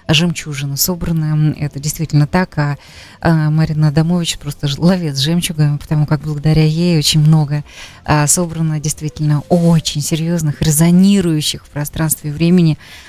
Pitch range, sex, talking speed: 150-175 Hz, female, 120 wpm